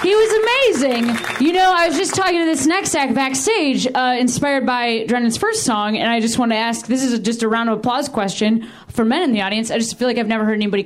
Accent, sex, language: American, female, English